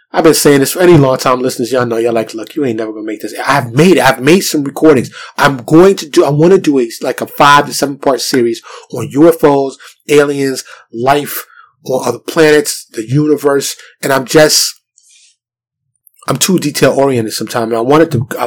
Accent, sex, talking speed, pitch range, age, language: American, male, 210 wpm, 120-140 Hz, 30-49, English